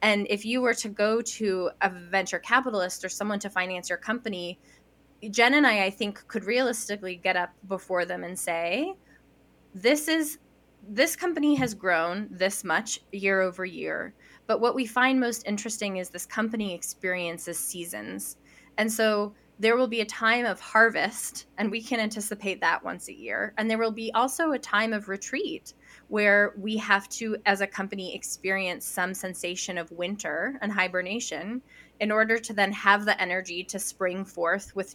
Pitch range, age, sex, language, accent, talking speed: 185-225 Hz, 20-39, female, English, American, 175 wpm